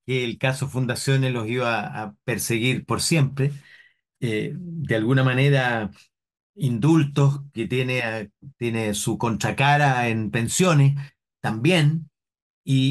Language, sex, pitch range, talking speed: Spanish, male, 115-145 Hz, 110 wpm